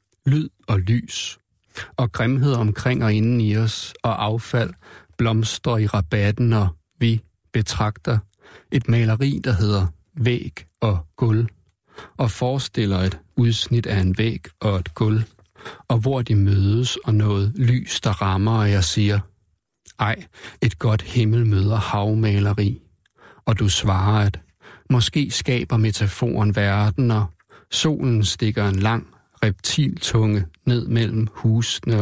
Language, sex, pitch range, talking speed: Danish, male, 100-120 Hz, 130 wpm